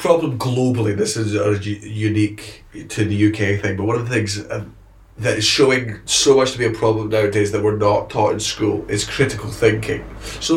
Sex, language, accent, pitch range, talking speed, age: male, English, British, 105-130 Hz, 200 wpm, 20-39